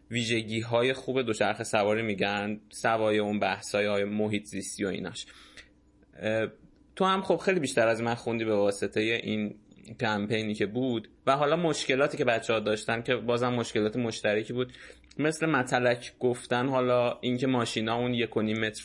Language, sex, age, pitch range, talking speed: Persian, male, 20-39, 110-130 Hz, 160 wpm